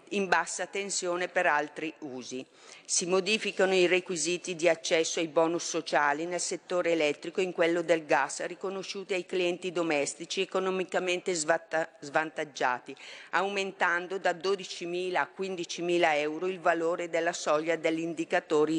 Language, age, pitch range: Italian, 40-59, 160-180 Hz